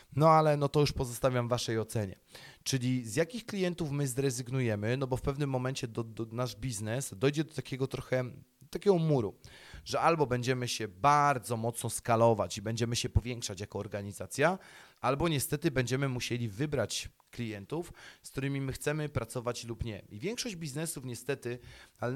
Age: 30-49